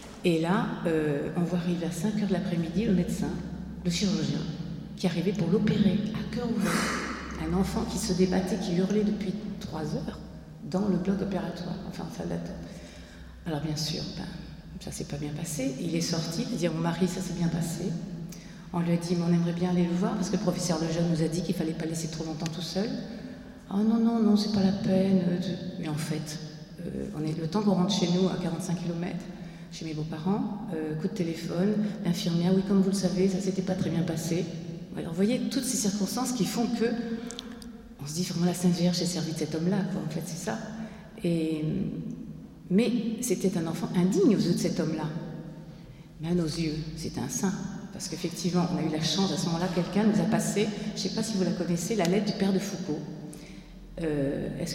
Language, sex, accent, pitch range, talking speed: French, female, French, 170-200 Hz, 230 wpm